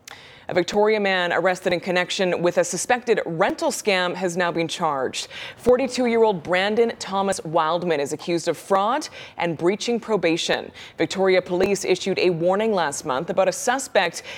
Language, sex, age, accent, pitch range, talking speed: English, female, 20-39, American, 175-225 Hz, 150 wpm